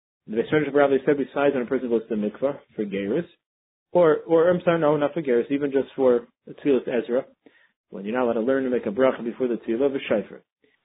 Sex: male